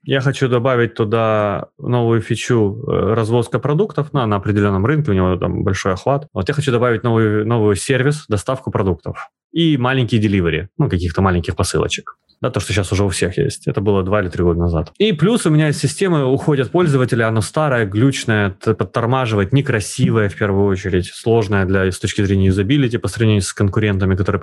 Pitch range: 100-145 Hz